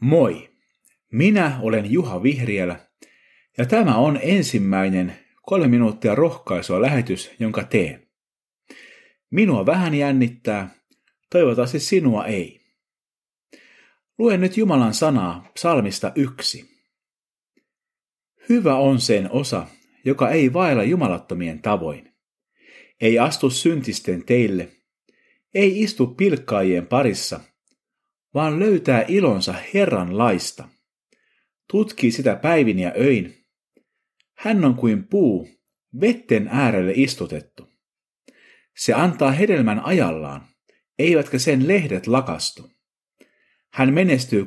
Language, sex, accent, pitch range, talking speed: Finnish, male, native, 110-175 Hz, 95 wpm